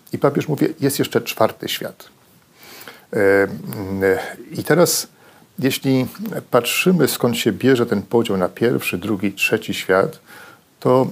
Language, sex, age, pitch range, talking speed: Polish, male, 40-59, 105-130 Hz, 120 wpm